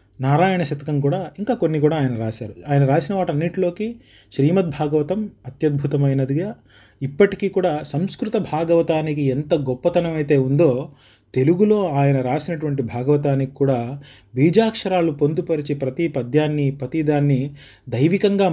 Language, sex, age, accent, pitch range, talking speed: Telugu, male, 30-49, native, 130-165 Hz, 105 wpm